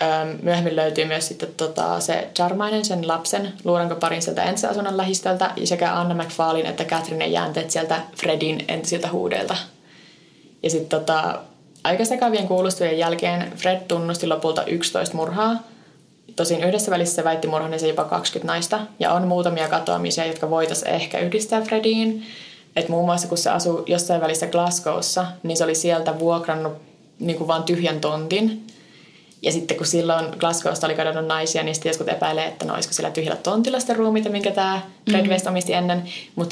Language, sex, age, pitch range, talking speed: Finnish, female, 20-39, 160-185 Hz, 160 wpm